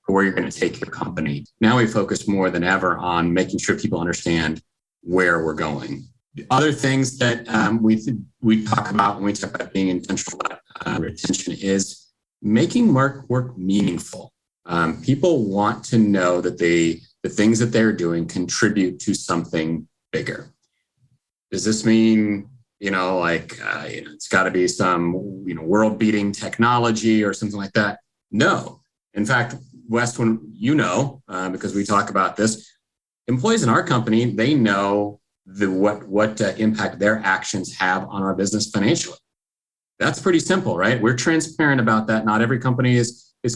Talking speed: 170 wpm